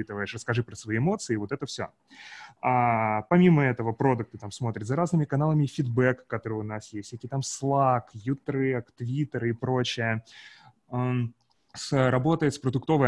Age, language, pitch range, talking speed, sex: 20-39, Russian, 110-145 Hz, 150 wpm, male